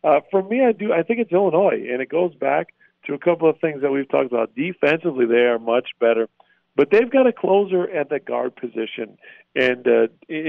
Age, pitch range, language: 40-59, 125-155 Hz, English